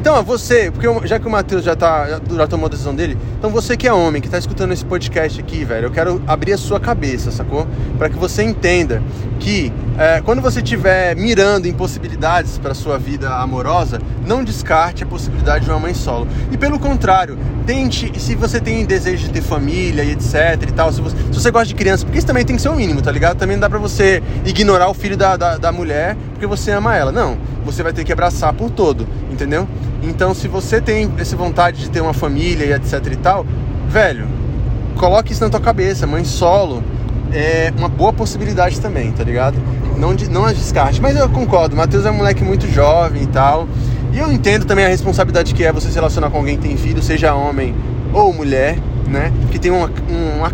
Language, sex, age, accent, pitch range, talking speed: Portuguese, male, 20-39, Brazilian, 115-155 Hz, 220 wpm